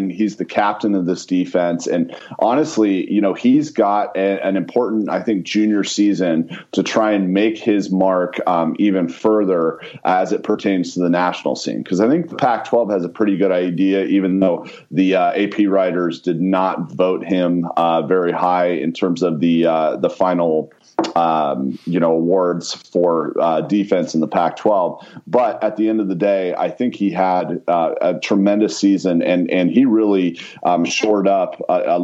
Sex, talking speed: male, 185 wpm